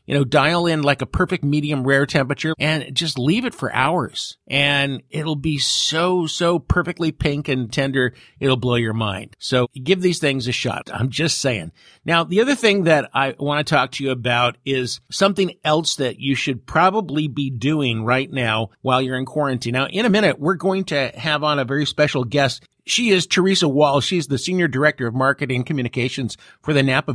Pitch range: 120-150 Hz